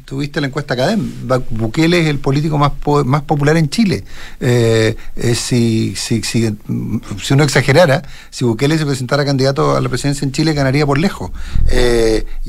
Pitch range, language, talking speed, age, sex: 120-170 Hz, Spanish, 160 wpm, 50-69, male